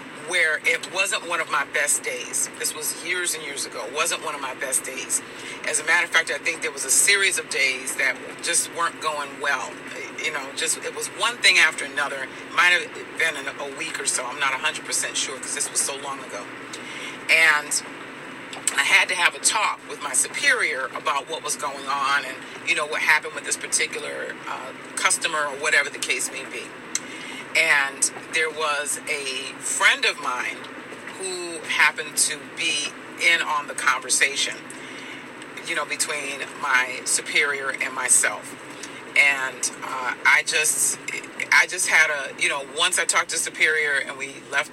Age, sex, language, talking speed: 40-59, female, English, 185 wpm